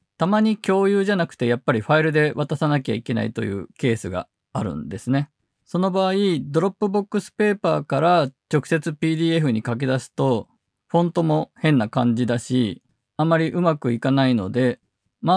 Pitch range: 120-175 Hz